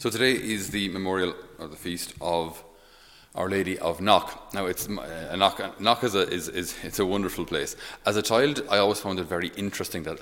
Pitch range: 85-105 Hz